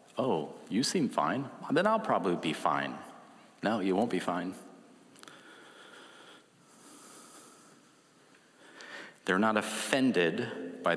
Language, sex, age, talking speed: English, male, 40-59, 100 wpm